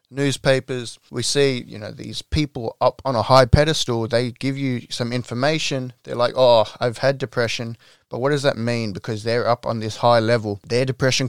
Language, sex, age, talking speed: English, male, 20-39, 195 wpm